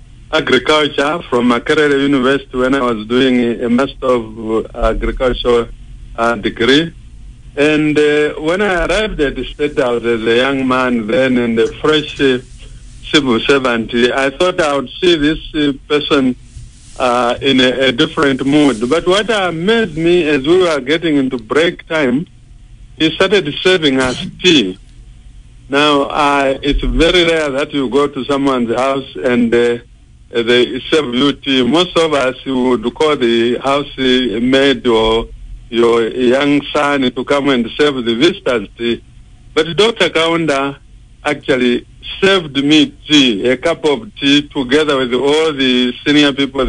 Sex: male